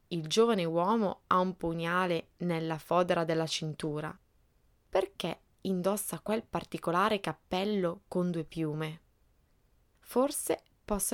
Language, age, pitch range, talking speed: Italian, 20-39, 155-205 Hz, 110 wpm